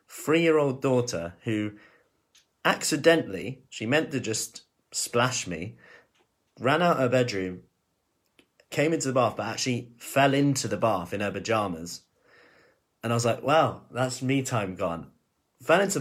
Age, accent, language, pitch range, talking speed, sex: 30-49, British, English, 95-130 Hz, 145 wpm, male